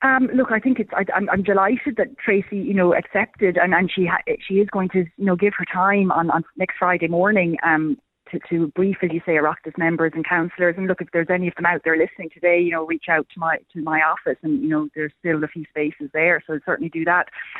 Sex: female